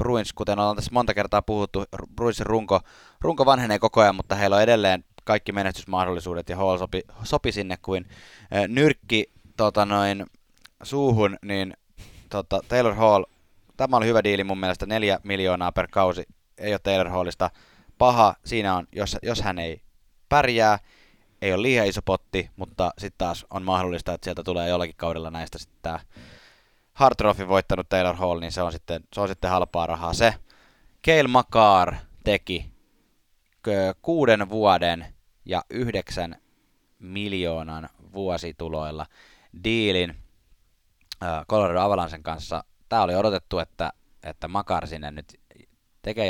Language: Finnish